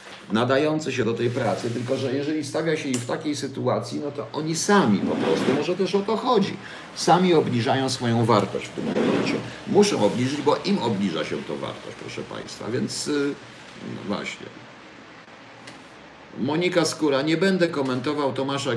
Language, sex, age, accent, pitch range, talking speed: Polish, male, 50-69, native, 125-150 Hz, 160 wpm